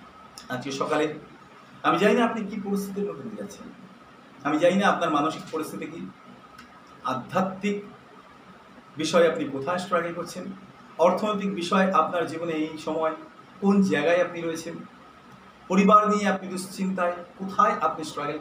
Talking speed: 130 wpm